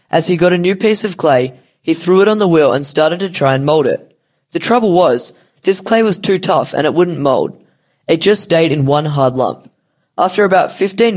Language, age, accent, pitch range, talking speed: English, 10-29, Australian, 140-185 Hz, 230 wpm